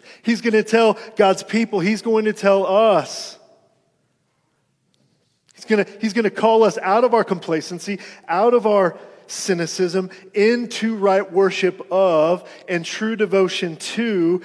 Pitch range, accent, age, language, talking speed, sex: 175-215 Hz, American, 40-59, English, 135 wpm, male